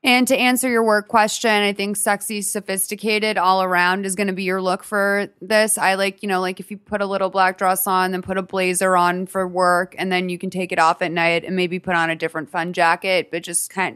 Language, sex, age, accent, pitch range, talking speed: English, female, 20-39, American, 180-210 Hz, 260 wpm